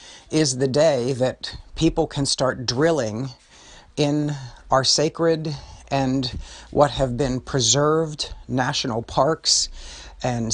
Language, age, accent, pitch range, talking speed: English, 50-69, American, 110-140 Hz, 110 wpm